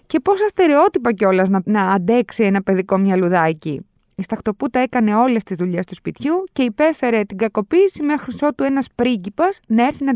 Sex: female